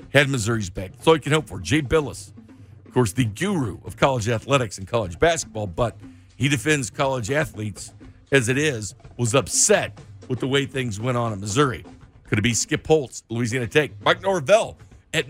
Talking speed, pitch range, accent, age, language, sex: 190 wpm, 110-150 Hz, American, 50-69, English, male